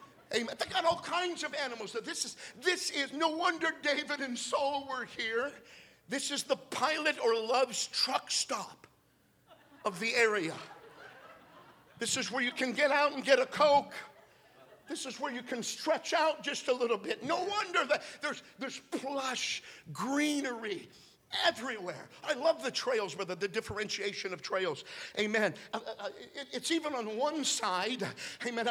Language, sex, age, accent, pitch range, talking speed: English, male, 50-69, American, 200-295 Hz, 160 wpm